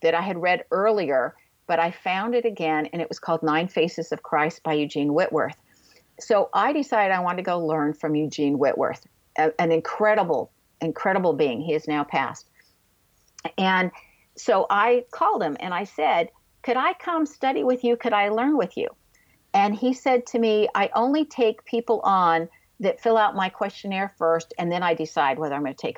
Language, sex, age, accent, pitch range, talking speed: English, female, 50-69, American, 165-230 Hz, 190 wpm